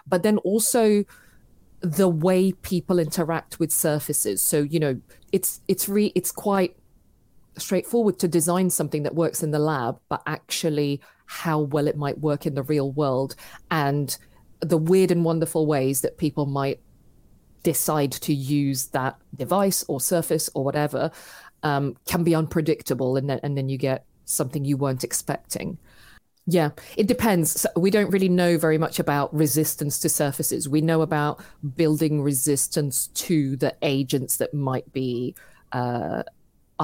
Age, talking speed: 40-59, 155 wpm